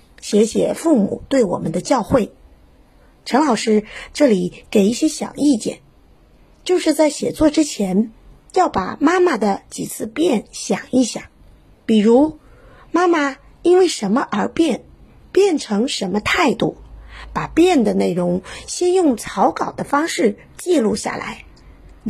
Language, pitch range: Chinese, 200-300 Hz